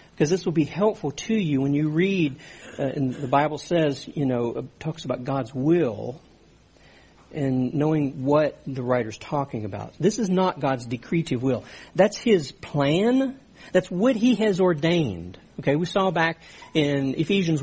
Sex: male